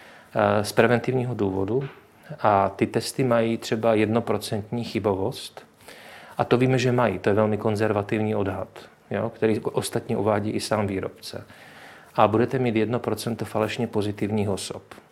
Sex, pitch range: male, 105-115 Hz